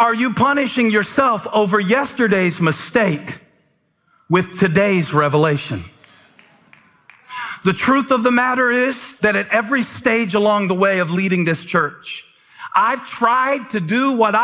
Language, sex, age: English, male, 40-59